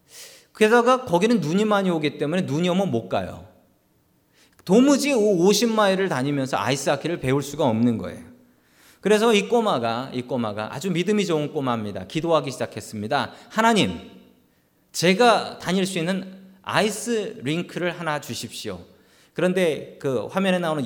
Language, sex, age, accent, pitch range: Korean, male, 40-59, native, 135-210 Hz